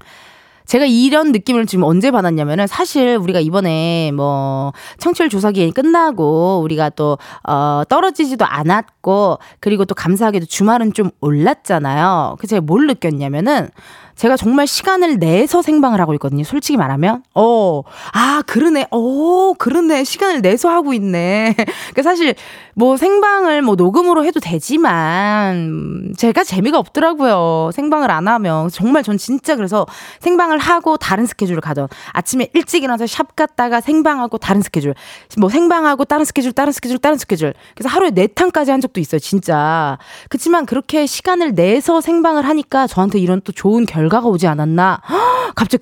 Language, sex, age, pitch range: Korean, female, 20-39, 180-300 Hz